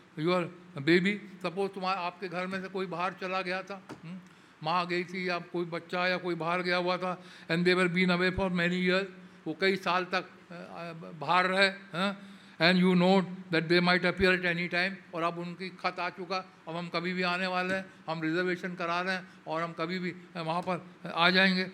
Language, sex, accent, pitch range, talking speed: English, male, Indian, 180-215 Hz, 180 wpm